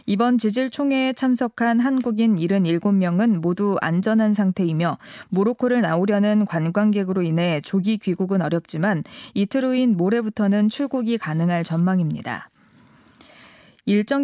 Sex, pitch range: female, 180-235 Hz